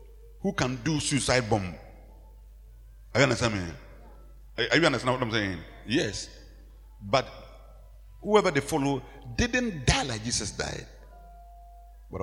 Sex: male